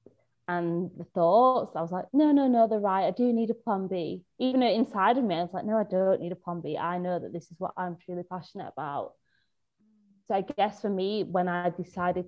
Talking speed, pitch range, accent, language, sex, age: 240 wpm, 165-195 Hz, British, English, female, 20-39